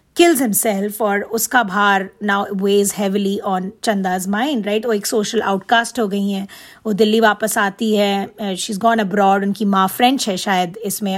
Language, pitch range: Hindi, 210-260 Hz